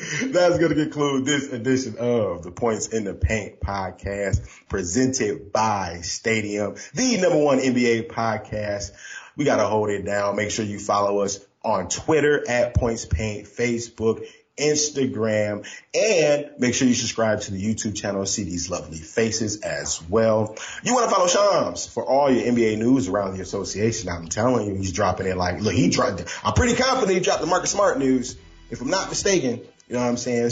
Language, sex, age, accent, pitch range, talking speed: English, male, 30-49, American, 100-130 Hz, 180 wpm